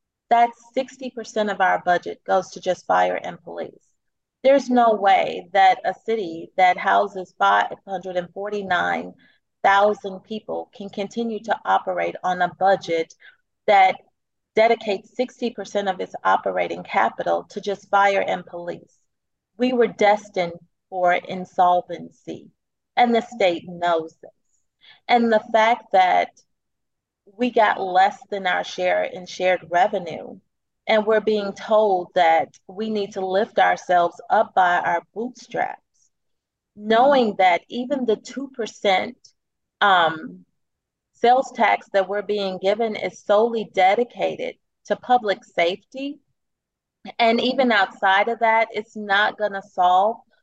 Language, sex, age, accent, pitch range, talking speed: English, female, 30-49, American, 185-230 Hz, 125 wpm